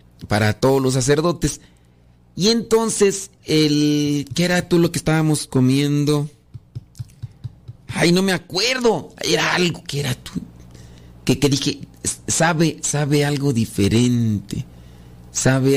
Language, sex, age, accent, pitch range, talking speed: Spanish, male, 40-59, Mexican, 120-165 Hz, 120 wpm